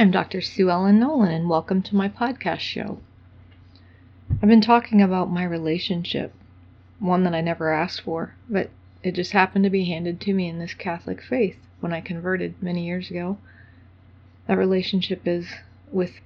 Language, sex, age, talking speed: English, female, 30-49, 170 wpm